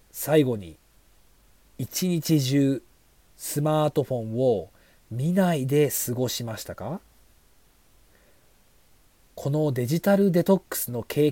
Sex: male